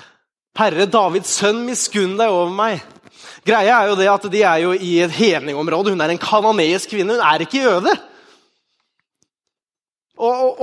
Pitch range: 165-235 Hz